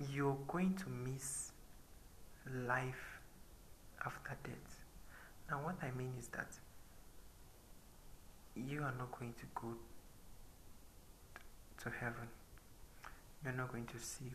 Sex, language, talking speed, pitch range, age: male, English, 110 wpm, 115-140 Hz, 60-79